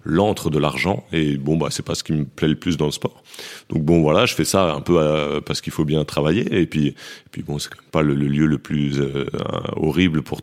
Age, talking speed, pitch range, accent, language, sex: 30-49, 245 wpm, 75-85 Hz, French, French, male